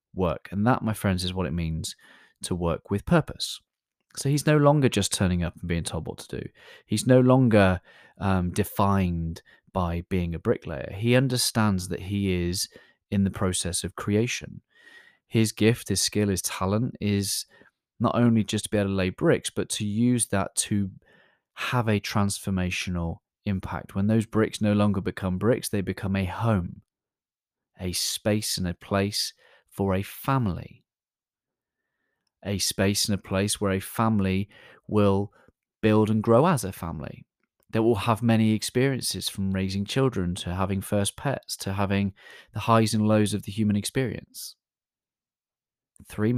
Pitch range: 90-110 Hz